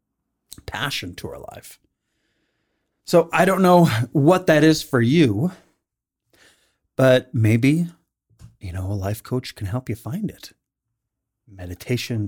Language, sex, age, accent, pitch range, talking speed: English, male, 30-49, American, 95-130 Hz, 125 wpm